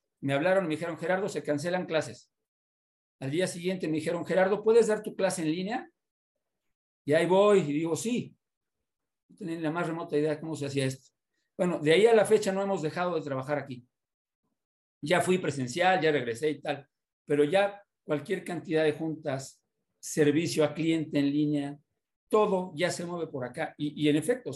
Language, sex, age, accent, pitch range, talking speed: Spanish, male, 50-69, Mexican, 140-175 Hz, 185 wpm